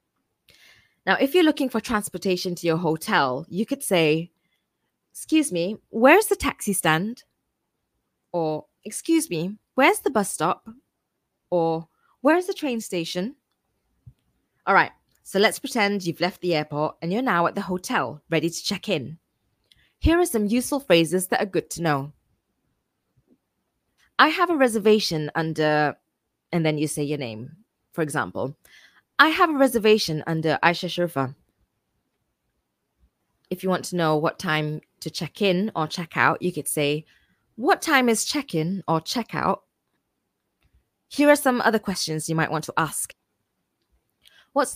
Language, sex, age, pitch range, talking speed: English, female, 20-39, 160-235 Hz, 155 wpm